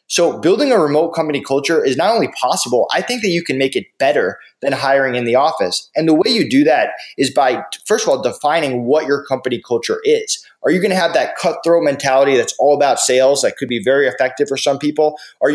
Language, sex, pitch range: English, male, 130-170 Hz